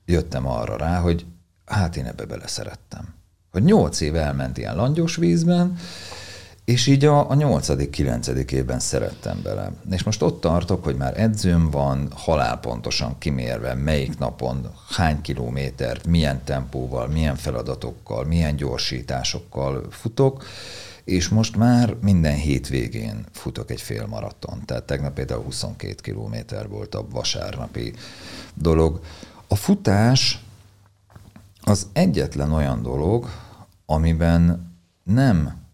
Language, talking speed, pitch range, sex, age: Hungarian, 120 wpm, 70-105 Hz, male, 50-69